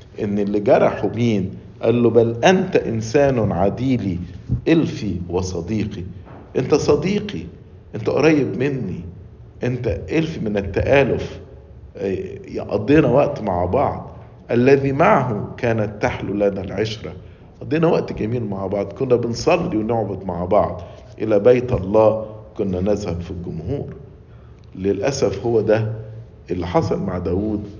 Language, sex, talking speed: English, male, 120 wpm